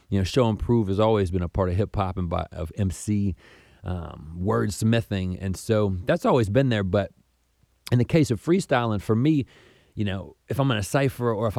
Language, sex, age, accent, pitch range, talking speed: English, male, 30-49, American, 95-120 Hz, 225 wpm